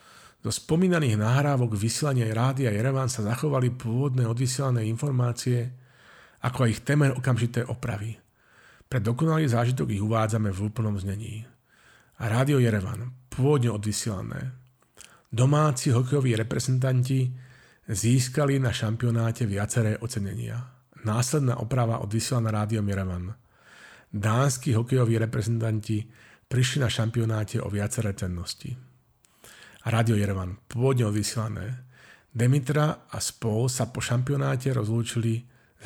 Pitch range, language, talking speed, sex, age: 110-130 Hz, Slovak, 105 wpm, male, 40-59